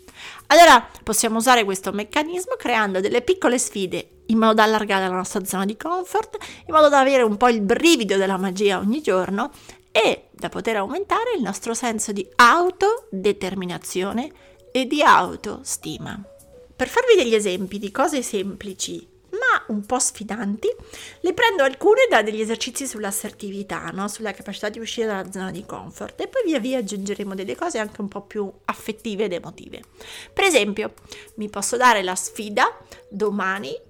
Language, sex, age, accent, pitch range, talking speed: Italian, female, 30-49, native, 200-255 Hz, 160 wpm